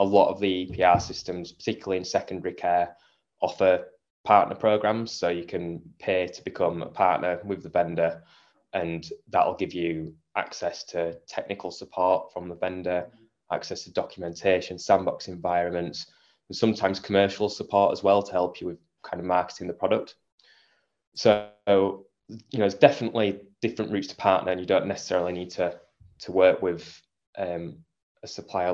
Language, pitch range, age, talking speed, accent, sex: English, 85-100 Hz, 20-39, 160 wpm, British, male